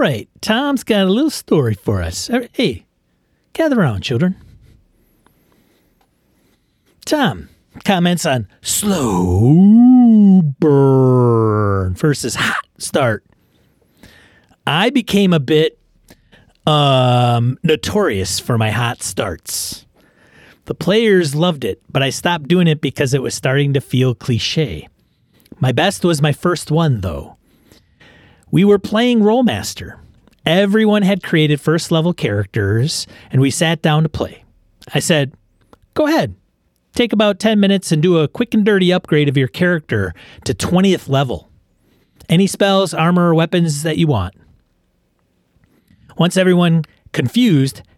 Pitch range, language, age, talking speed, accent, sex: 120-185 Hz, English, 40-59, 125 wpm, American, male